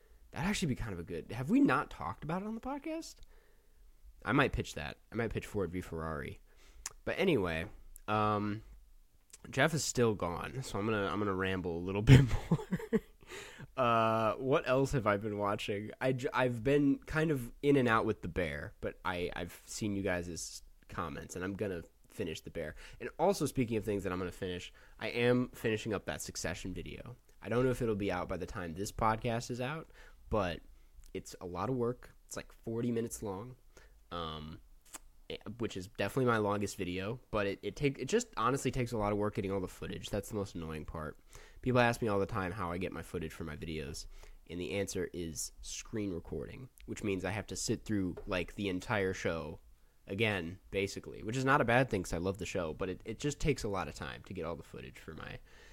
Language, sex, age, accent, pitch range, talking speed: English, male, 20-39, American, 90-125 Hz, 225 wpm